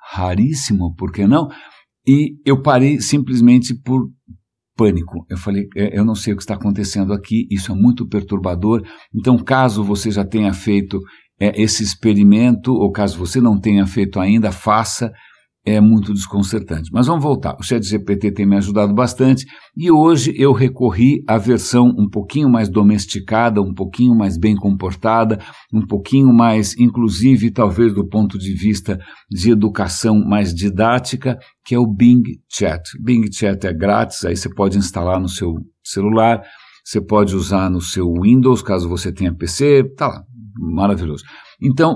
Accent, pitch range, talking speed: Brazilian, 100-125 Hz, 155 wpm